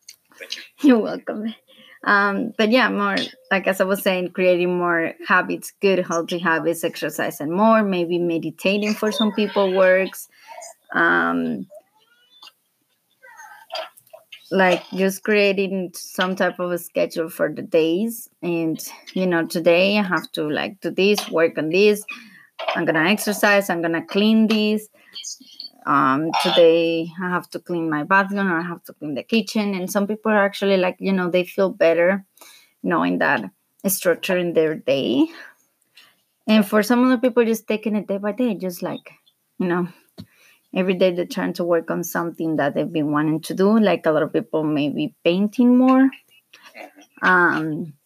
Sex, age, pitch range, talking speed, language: female, 20-39, 170-215 Hz, 165 wpm, English